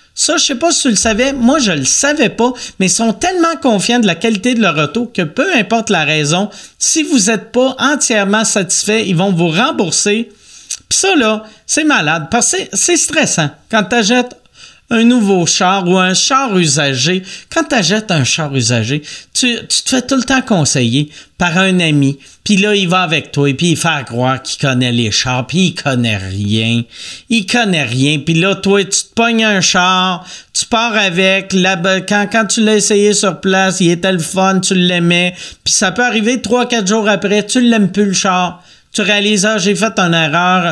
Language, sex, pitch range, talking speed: French, male, 170-230 Hz, 210 wpm